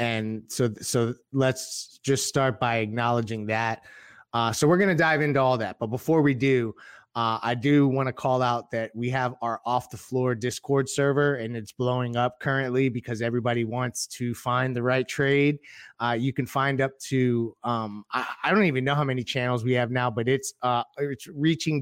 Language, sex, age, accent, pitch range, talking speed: English, male, 30-49, American, 120-135 Hz, 200 wpm